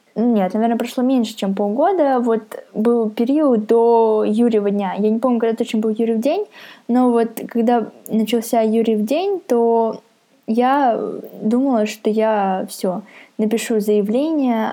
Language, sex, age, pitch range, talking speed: Russian, female, 10-29, 205-250 Hz, 145 wpm